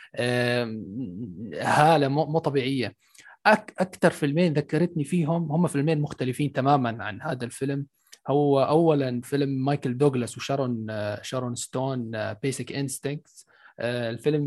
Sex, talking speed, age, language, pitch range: male, 110 wpm, 20-39, Arabic, 130-155 Hz